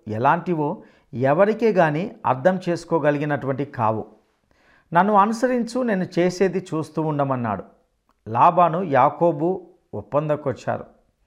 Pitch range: 135-180 Hz